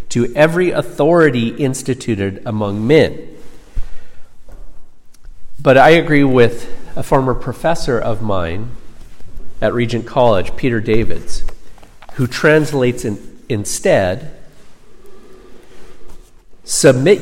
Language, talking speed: English, 85 wpm